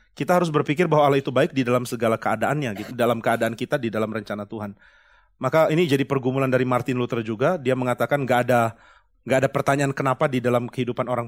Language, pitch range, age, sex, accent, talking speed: Indonesian, 120-150 Hz, 30-49, male, native, 205 wpm